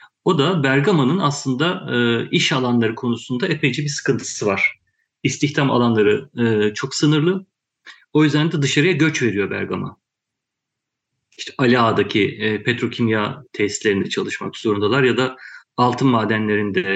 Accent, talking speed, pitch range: native, 125 wpm, 115-150 Hz